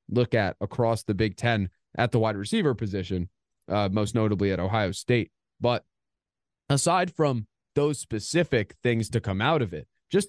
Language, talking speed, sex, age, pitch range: English, 170 wpm, male, 20-39, 105-140 Hz